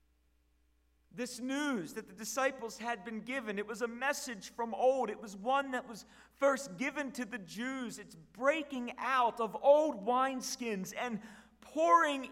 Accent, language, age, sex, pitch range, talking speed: American, English, 40-59, male, 195-255 Hz, 155 wpm